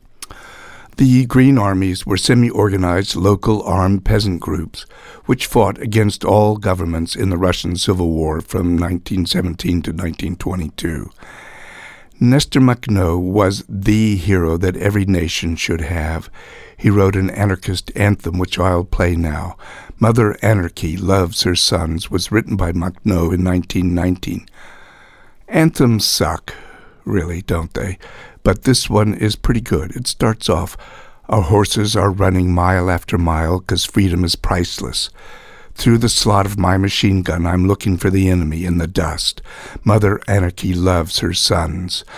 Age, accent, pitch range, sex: 60-79, American, 90-105 Hz, male